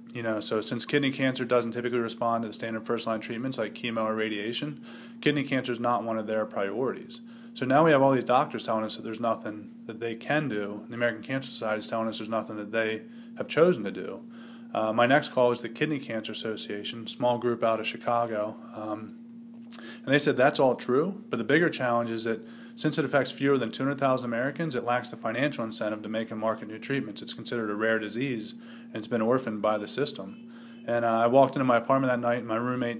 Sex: male